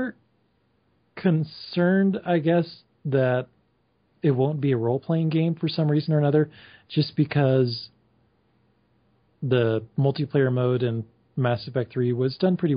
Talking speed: 130 wpm